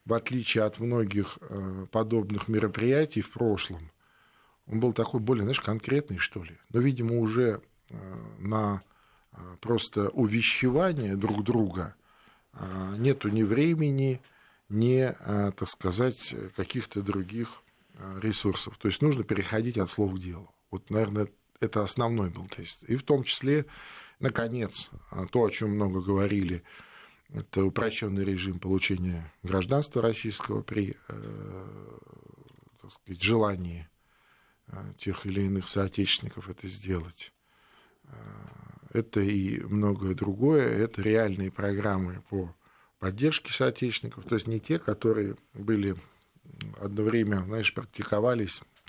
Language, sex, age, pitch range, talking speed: Russian, male, 40-59, 95-120 Hz, 115 wpm